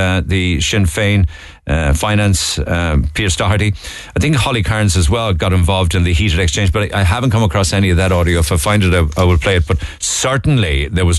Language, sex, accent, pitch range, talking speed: English, male, Irish, 85-110 Hz, 235 wpm